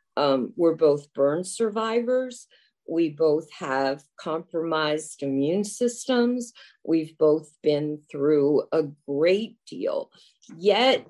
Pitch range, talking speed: 160-250 Hz, 105 wpm